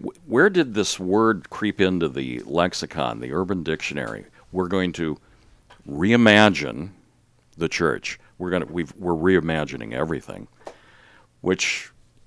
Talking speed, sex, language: 115 wpm, male, English